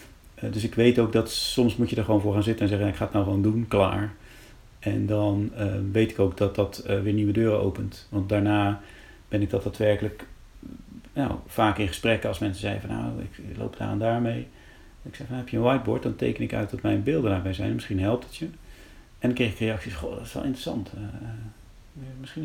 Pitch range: 105-125 Hz